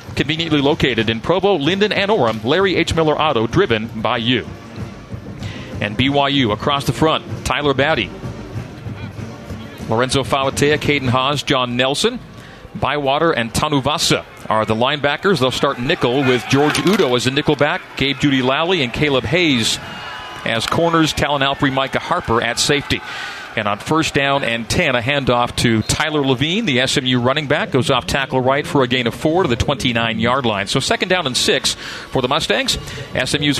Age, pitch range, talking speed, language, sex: 40-59, 125-150 Hz, 165 wpm, English, male